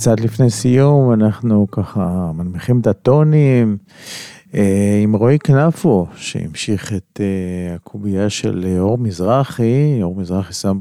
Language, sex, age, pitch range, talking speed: English, male, 40-59, 95-125 Hz, 110 wpm